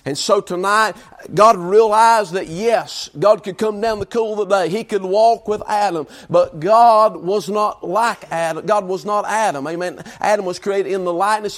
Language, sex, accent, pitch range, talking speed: English, male, American, 185-220 Hz, 195 wpm